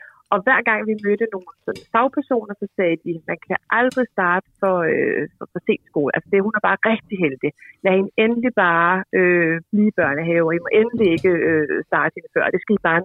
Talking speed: 220 wpm